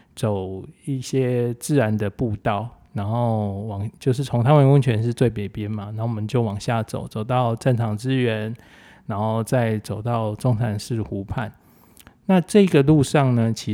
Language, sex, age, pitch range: Chinese, male, 20-39, 105-130 Hz